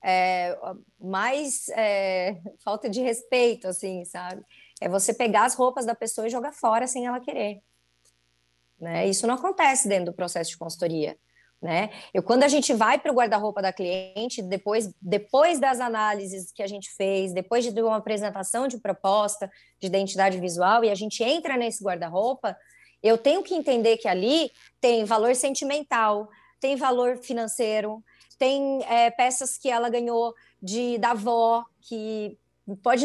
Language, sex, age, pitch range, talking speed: Portuguese, male, 20-39, 200-265 Hz, 160 wpm